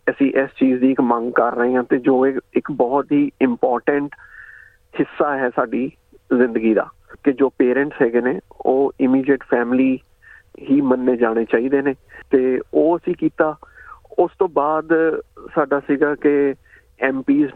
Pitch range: 135-175 Hz